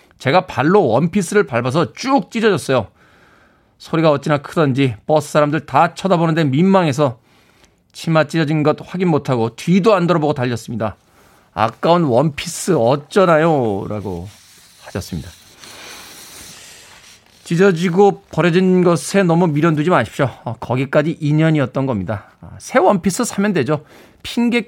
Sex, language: male, Korean